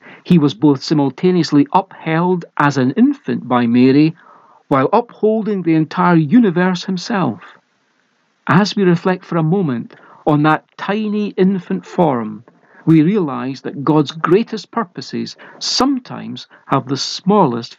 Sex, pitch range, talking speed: male, 140-200 Hz, 125 wpm